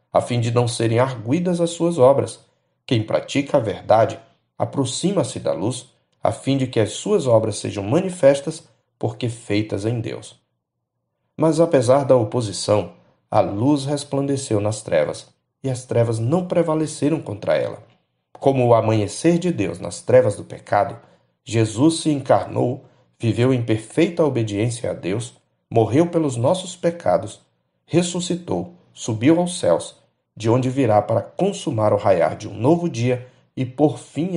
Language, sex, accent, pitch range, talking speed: Portuguese, male, Brazilian, 110-155 Hz, 150 wpm